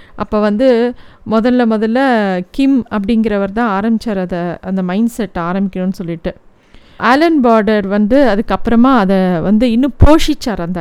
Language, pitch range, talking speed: Tamil, 215-265 Hz, 130 wpm